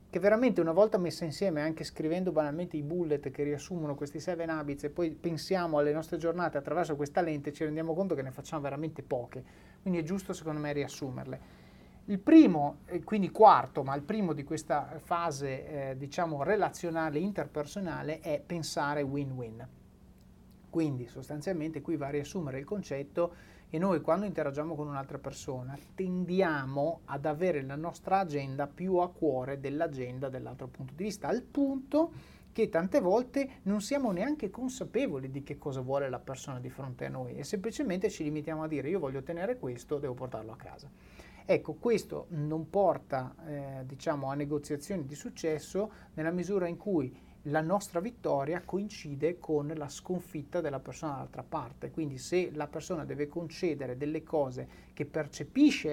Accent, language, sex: native, Italian, male